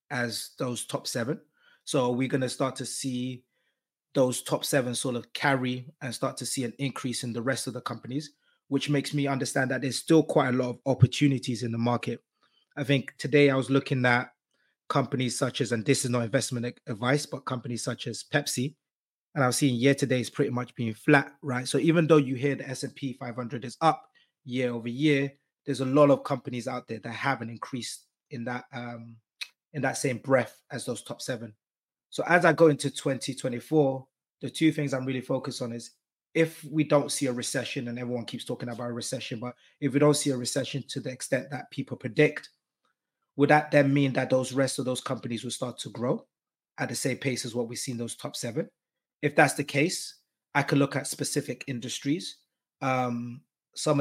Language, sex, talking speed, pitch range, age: English, male, 210 wpm, 125-140 Hz, 20-39